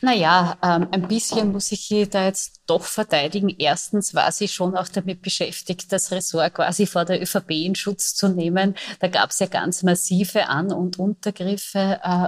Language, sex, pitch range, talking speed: German, female, 170-200 Hz, 185 wpm